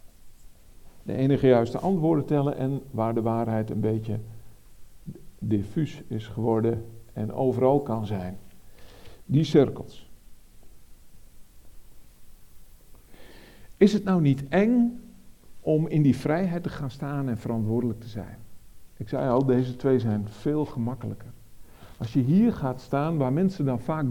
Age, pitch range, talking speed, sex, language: 50-69, 115-155 Hz, 130 wpm, male, Dutch